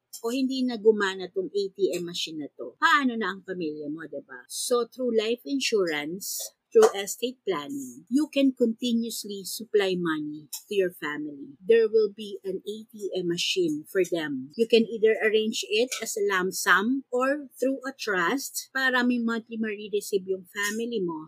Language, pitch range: Filipino, 190-270 Hz